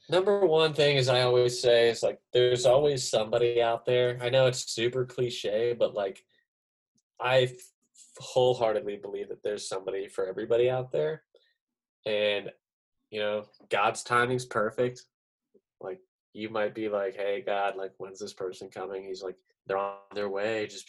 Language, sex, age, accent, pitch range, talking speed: English, male, 20-39, American, 105-140 Hz, 160 wpm